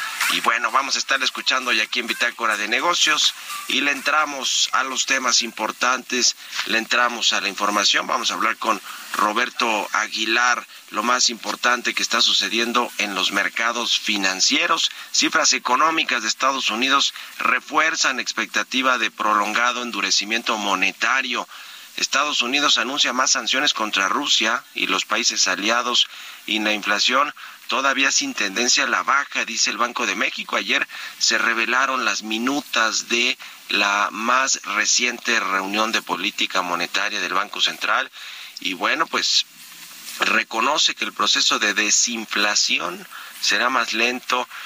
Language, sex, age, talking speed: Spanish, male, 40-59, 140 wpm